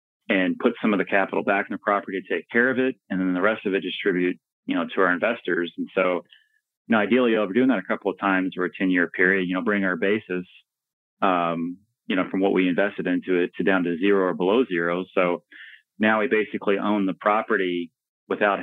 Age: 30-49